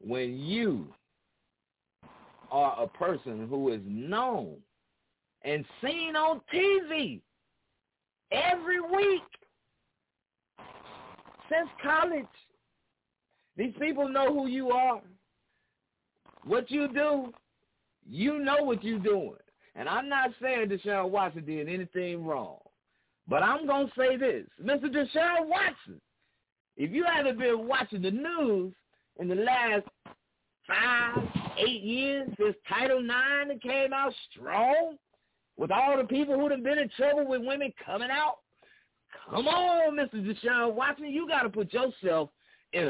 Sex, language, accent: male, English, American